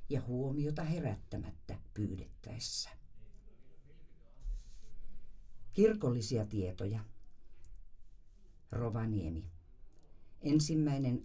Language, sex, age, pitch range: Finnish, female, 50-69, 95-125 Hz